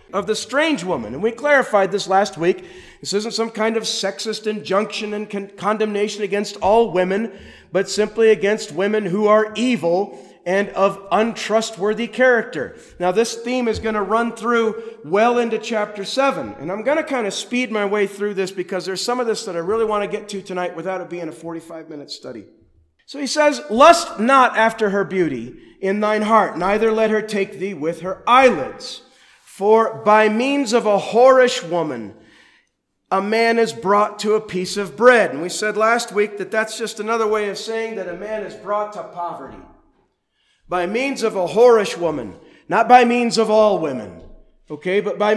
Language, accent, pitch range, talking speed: English, American, 190-225 Hz, 190 wpm